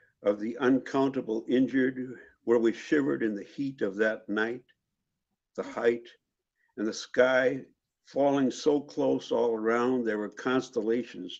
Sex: male